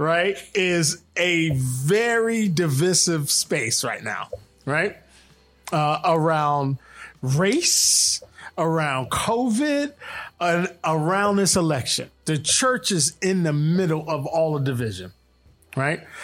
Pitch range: 150-190 Hz